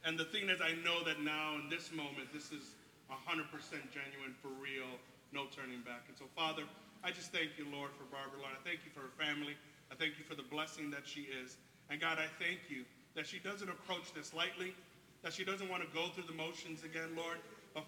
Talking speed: 230 wpm